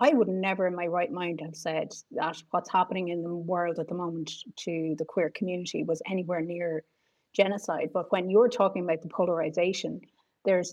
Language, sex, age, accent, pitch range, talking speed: English, female, 30-49, Irish, 165-200 Hz, 190 wpm